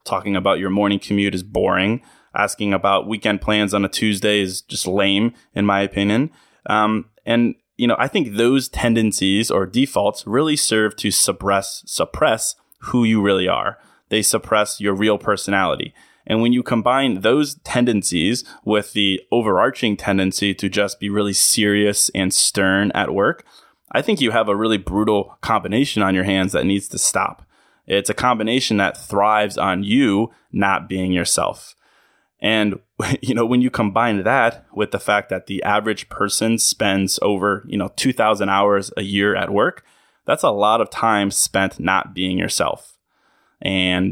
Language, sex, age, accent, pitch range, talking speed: English, male, 20-39, American, 95-110 Hz, 165 wpm